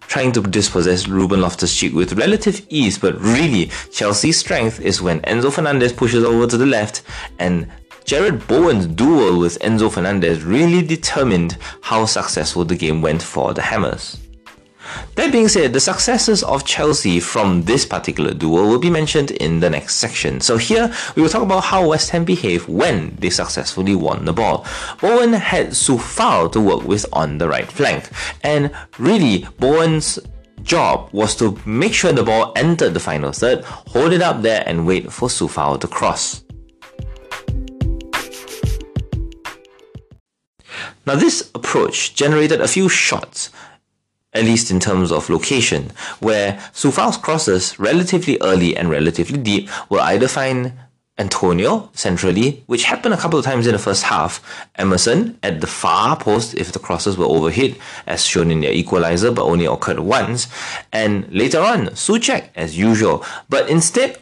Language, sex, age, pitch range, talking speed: English, male, 30-49, 90-155 Hz, 160 wpm